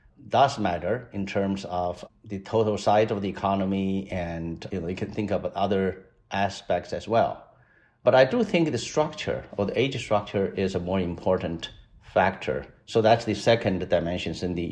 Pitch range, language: 95-120 Hz, English